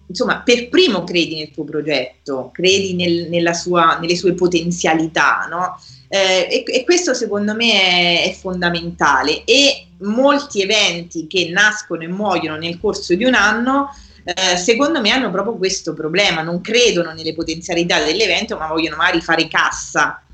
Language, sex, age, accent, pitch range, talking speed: Italian, female, 30-49, native, 170-235 Hz, 155 wpm